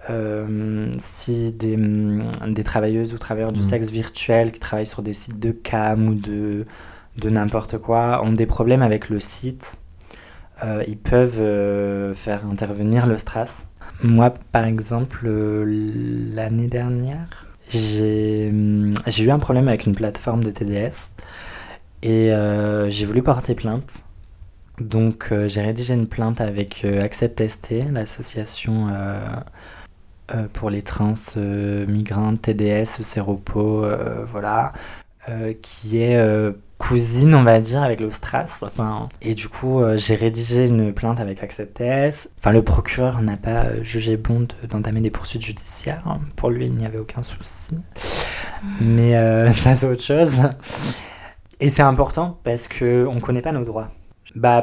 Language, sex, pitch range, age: French, male, 105-115 Hz, 20-39